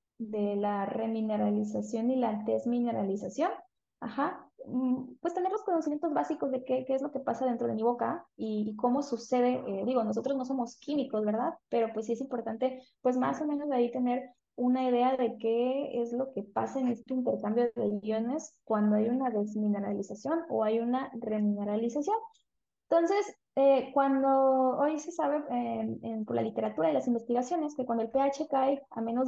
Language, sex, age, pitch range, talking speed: Spanish, female, 20-39, 230-275 Hz, 180 wpm